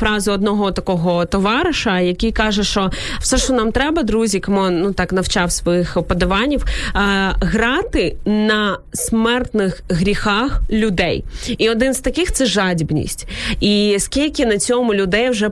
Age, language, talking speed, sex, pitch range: 20-39, Ukrainian, 145 wpm, female, 195-230 Hz